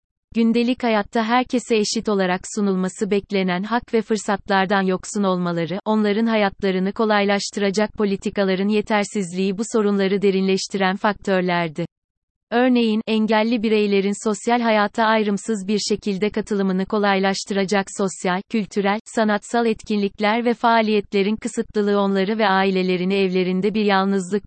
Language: Turkish